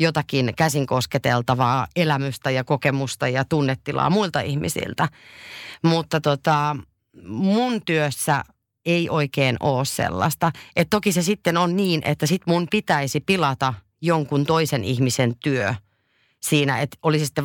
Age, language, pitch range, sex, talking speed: 30-49, Finnish, 135-170 Hz, female, 125 wpm